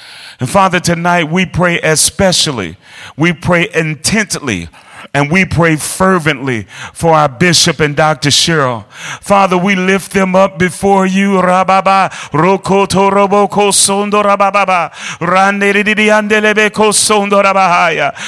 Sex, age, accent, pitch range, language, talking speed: male, 40-59, American, 185-225 Hz, English, 90 wpm